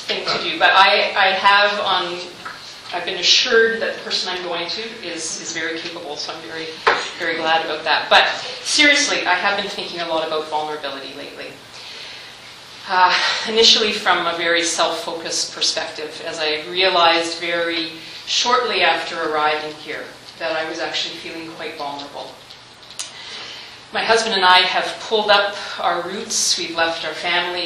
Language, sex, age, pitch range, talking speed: English, female, 40-59, 160-190 Hz, 160 wpm